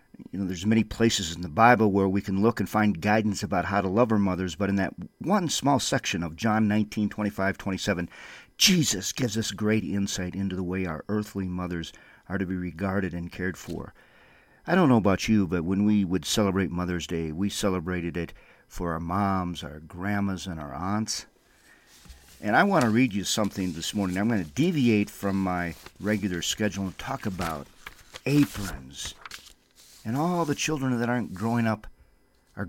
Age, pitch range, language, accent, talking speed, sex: 50-69, 95-120 Hz, English, American, 195 wpm, male